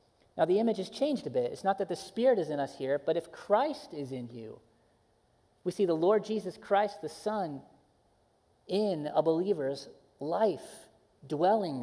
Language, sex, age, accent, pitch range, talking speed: English, male, 40-59, American, 145-210 Hz, 180 wpm